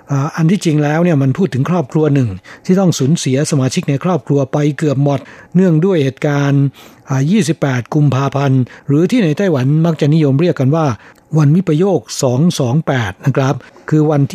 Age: 60-79